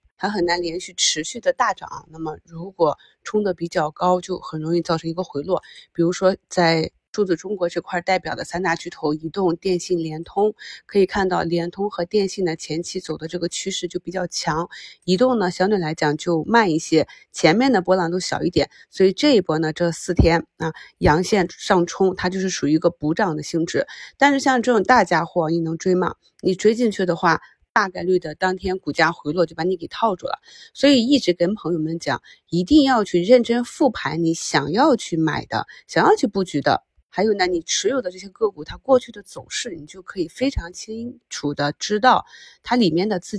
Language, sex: Chinese, female